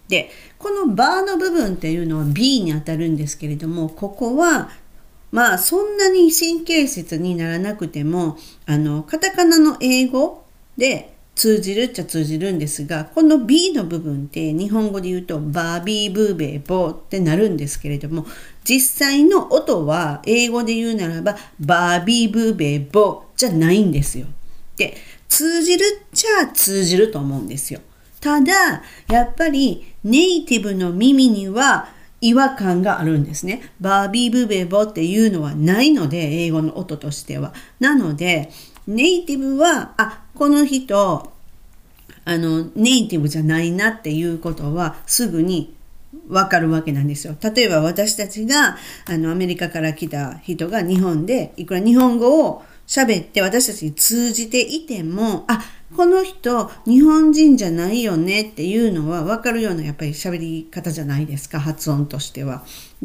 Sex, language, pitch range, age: female, Japanese, 160-250 Hz, 40-59